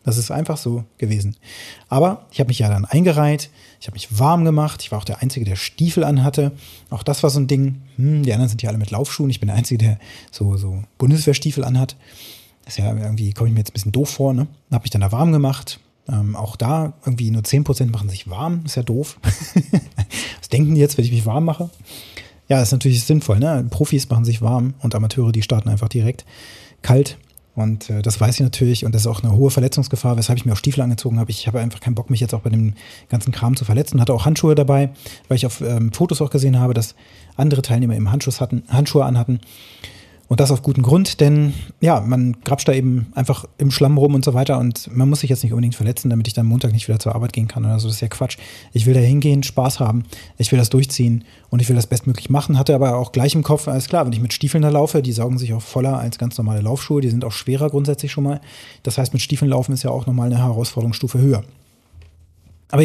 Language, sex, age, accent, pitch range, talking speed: German, male, 30-49, German, 115-140 Hz, 245 wpm